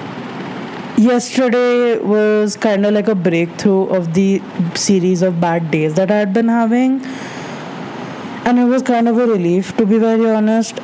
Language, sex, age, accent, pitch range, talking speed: English, female, 20-39, Indian, 180-220 Hz, 160 wpm